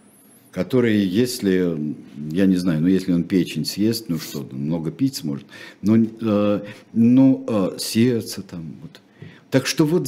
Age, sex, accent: 60-79, male, native